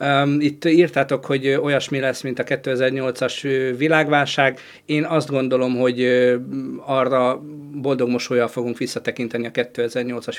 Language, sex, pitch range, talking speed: Hungarian, male, 125-150 Hz, 110 wpm